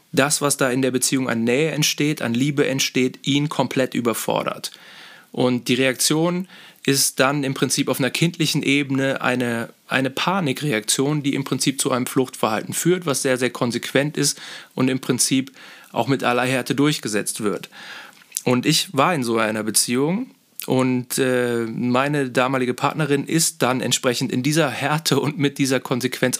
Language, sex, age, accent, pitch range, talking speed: German, male, 30-49, German, 125-145 Hz, 160 wpm